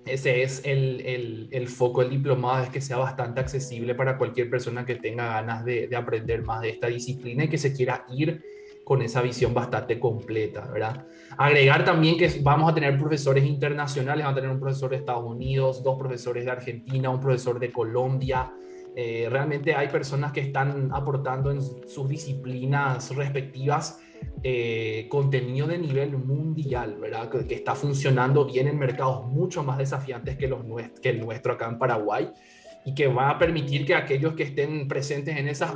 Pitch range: 125-145 Hz